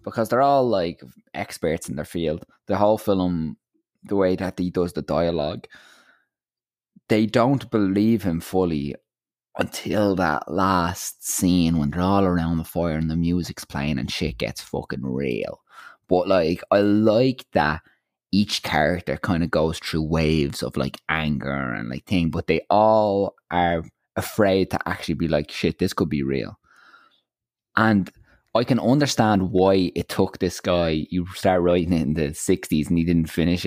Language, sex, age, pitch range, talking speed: English, male, 20-39, 80-100 Hz, 170 wpm